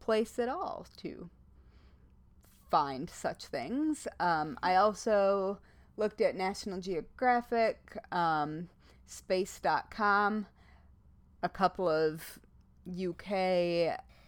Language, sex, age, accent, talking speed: English, female, 30-49, American, 85 wpm